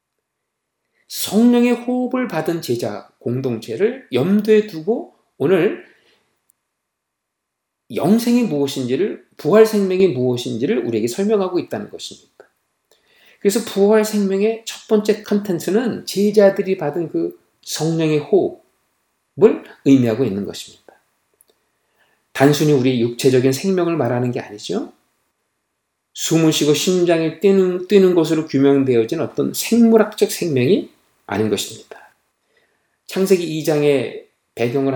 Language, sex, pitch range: Korean, male, 140-220 Hz